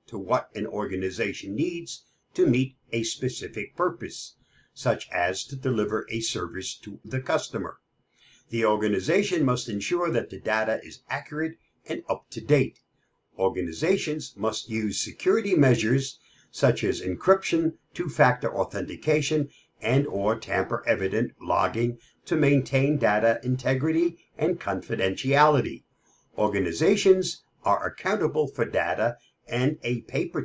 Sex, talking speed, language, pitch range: male, 115 wpm, English, 110-155 Hz